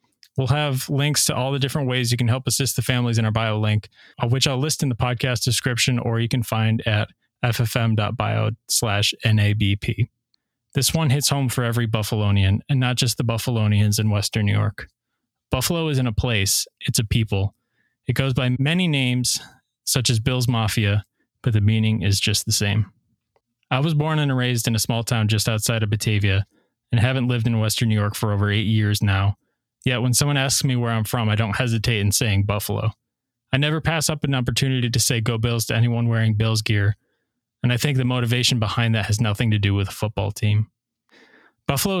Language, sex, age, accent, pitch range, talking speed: English, male, 20-39, American, 110-125 Hz, 200 wpm